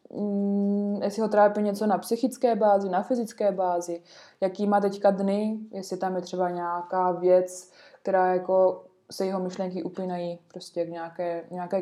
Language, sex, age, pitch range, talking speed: Czech, female, 20-39, 190-220 Hz, 155 wpm